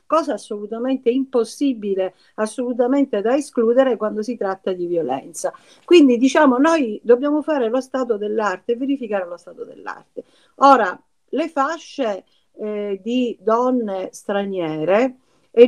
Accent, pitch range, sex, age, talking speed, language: native, 185-235 Hz, female, 50-69, 120 wpm, Italian